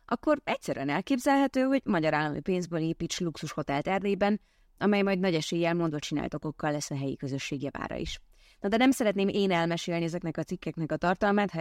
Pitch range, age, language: 160-200 Hz, 20-39, Hungarian